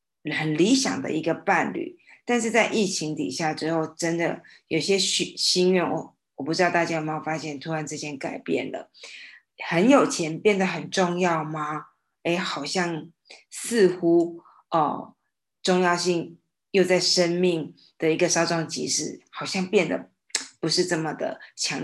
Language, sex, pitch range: Chinese, female, 155-185 Hz